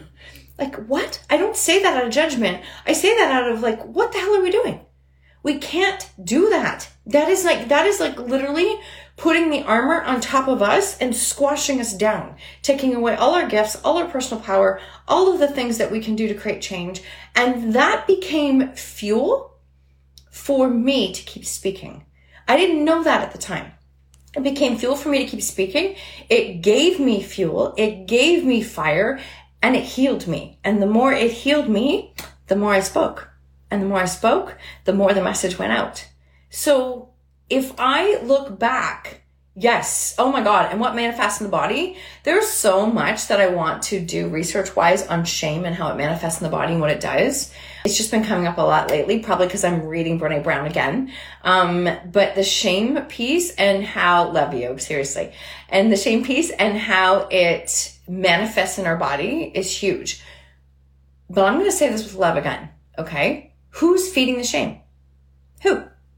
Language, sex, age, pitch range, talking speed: English, female, 30-49, 165-270 Hz, 190 wpm